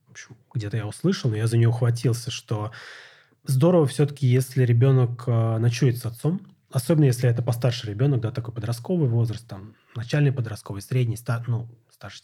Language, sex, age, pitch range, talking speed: Russian, male, 20-39, 110-130 Hz, 165 wpm